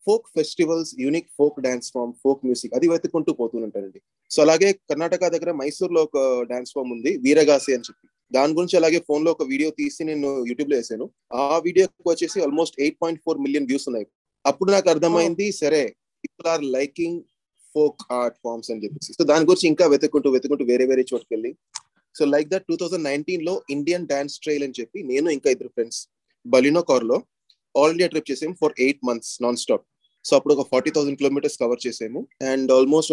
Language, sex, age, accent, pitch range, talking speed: Telugu, male, 20-39, native, 130-170 Hz, 185 wpm